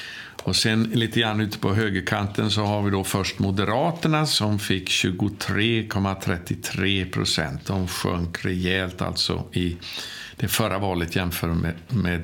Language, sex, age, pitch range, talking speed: Swedish, male, 50-69, 90-105 Hz, 135 wpm